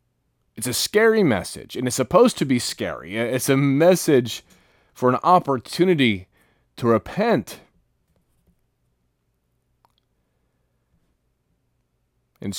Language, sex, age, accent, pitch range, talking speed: English, male, 30-49, American, 110-155 Hz, 90 wpm